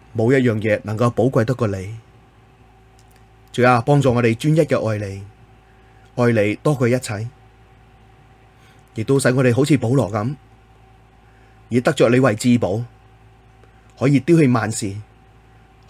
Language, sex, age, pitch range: Chinese, male, 30-49, 110-125 Hz